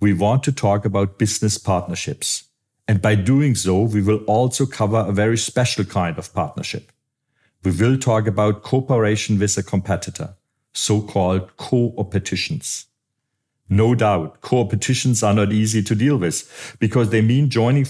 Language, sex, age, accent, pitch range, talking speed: English, male, 50-69, German, 100-125 Hz, 150 wpm